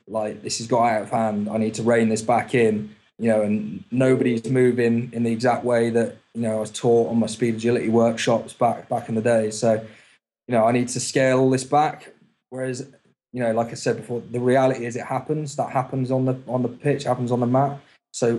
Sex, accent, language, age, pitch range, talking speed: male, British, English, 20-39, 115-130 Hz, 235 wpm